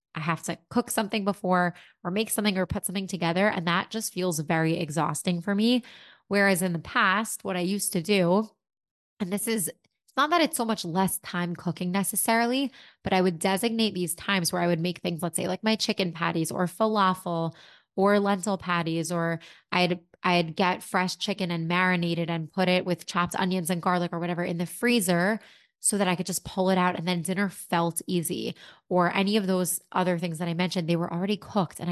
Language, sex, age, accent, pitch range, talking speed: English, female, 20-39, American, 170-195 Hz, 210 wpm